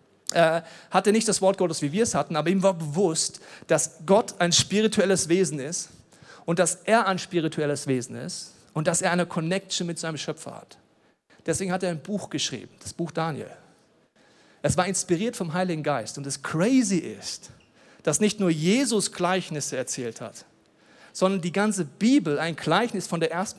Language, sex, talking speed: German, male, 180 wpm